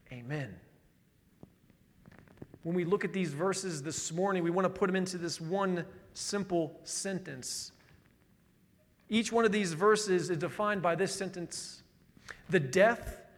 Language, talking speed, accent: English, 140 wpm, American